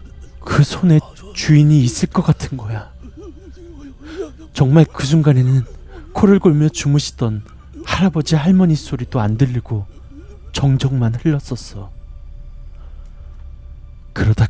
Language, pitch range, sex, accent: Korean, 100-145 Hz, male, native